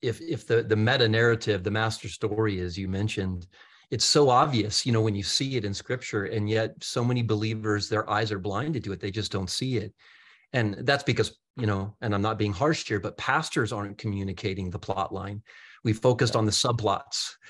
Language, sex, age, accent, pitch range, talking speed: English, male, 40-59, American, 105-125 Hz, 215 wpm